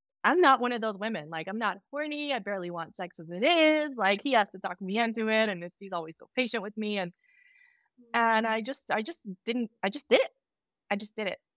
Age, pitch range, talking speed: 20-39, 155-200 Hz, 250 wpm